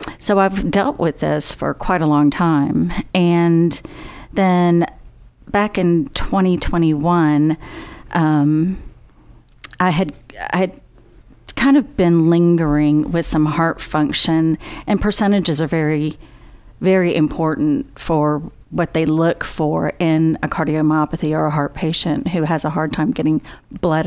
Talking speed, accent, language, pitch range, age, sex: 130 wpm, American, English, 155-180 Hz, 40-59, female